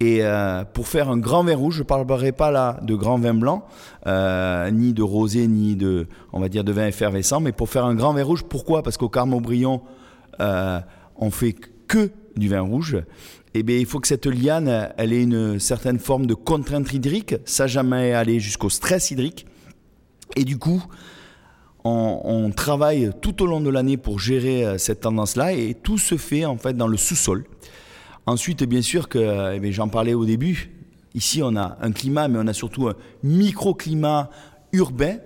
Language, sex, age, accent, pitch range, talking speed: French, male, 30-49, French, 110-145 Hz, 190 wpm